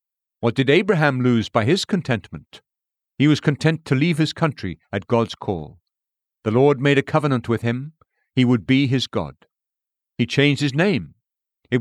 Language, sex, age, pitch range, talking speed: English, male, 50-69, 110-140 Hz, 175 wpm